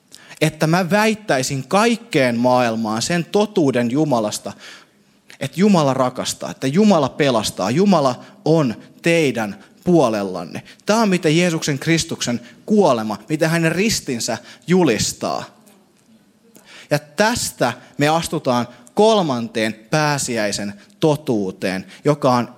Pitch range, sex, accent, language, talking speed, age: 125-190 Hz, male, native, Finnish, 100 wpm, 20-39